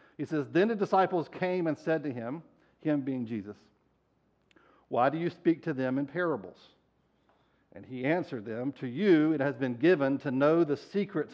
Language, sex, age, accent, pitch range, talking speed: English, male, 50-69, American, 145-200 Hz, 185 wpm